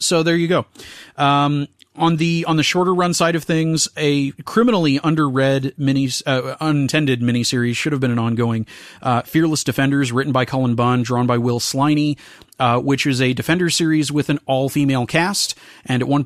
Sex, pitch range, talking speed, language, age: male, 125-150 Hz, 190 wpm, English, 30-49